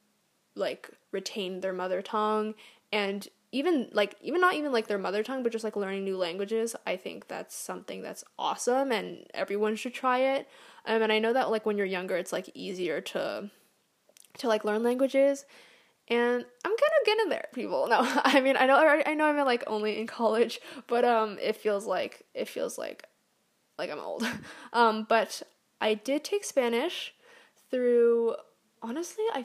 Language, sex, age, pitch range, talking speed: English, female, 10-29, 215-280 Hz, 180 wpm